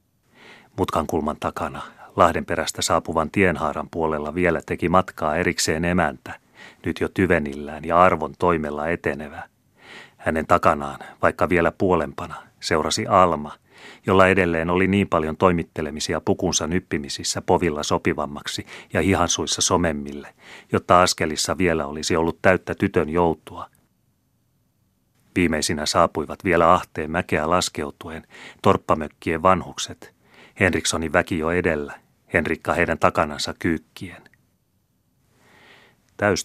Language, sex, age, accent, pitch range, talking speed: Finnish, male, 30-49, native, 75-90 Hz, 105 wpm